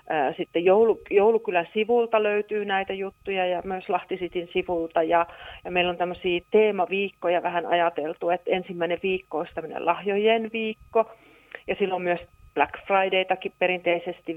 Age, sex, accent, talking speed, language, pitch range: 40-59, female, native, 130 wpm, Finnish, 170-210 Hz